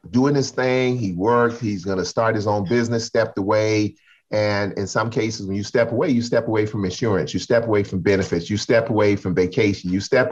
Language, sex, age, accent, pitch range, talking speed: English, male, 40-59, American, 95-120 Hz, 220 wpm